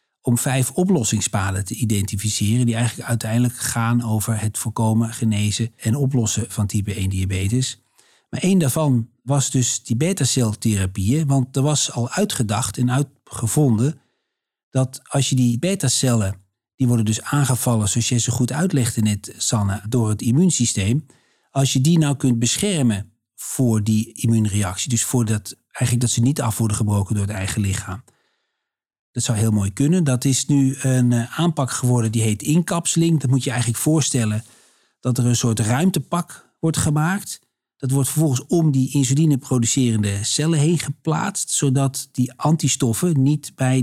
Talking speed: 160 wpm